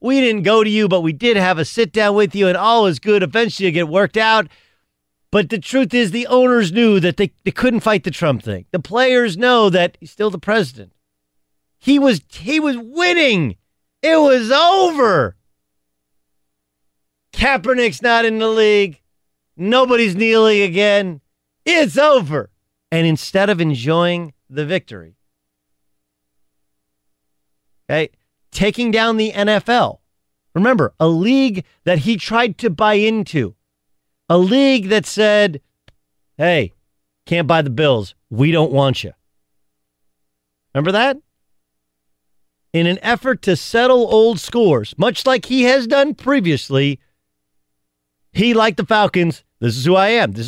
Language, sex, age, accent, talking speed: English, male, 40-59, American, 145 wpm